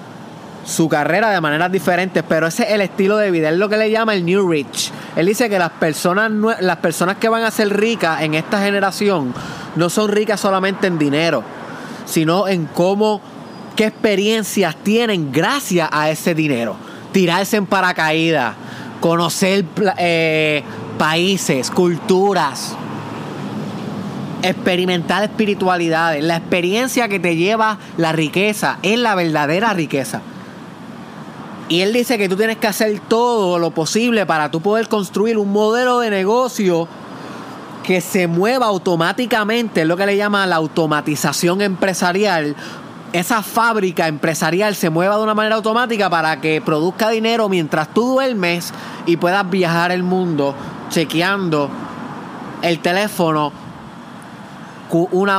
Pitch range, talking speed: 165-215 Hz, 135 wpm